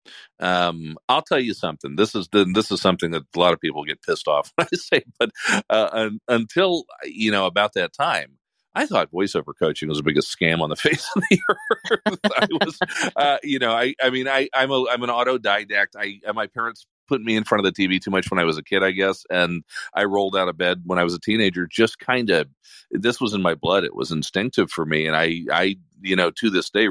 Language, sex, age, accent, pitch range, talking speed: English, male, 40-59, American, 85-115 Hz, 250 wpm